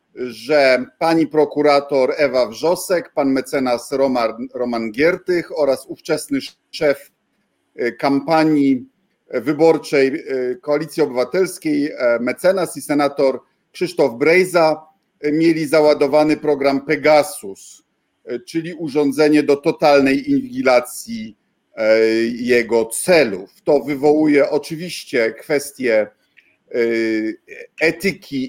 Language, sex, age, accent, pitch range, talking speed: Polish, male, 50-69, native, 125-155 Hz, 80 wpm